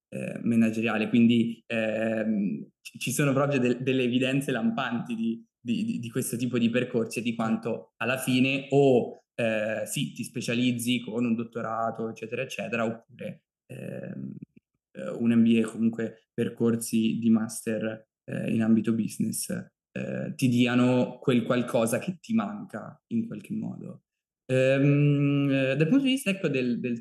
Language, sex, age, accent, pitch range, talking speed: Italian, male, 20-39, native, 115-140 Hz, 135 wpm